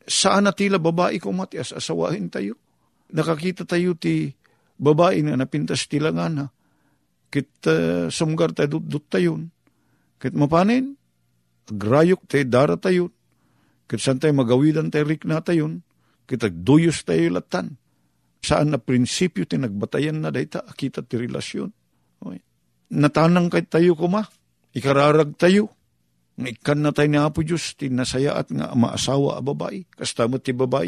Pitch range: 100-155 Hz